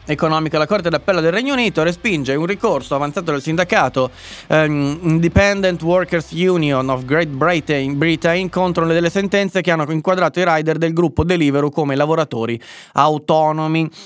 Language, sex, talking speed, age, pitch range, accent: Italian, male, 155 wpm, 20-39, 140-180 Hz, native